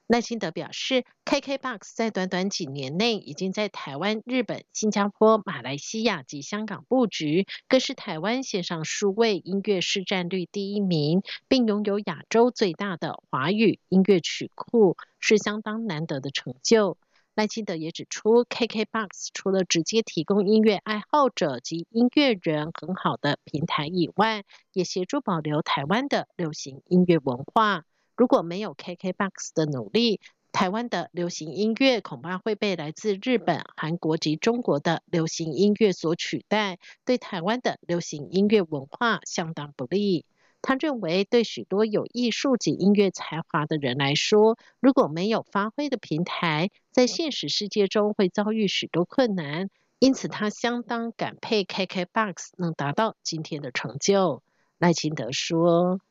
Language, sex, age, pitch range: French, female, 50-69, 165-220 Hz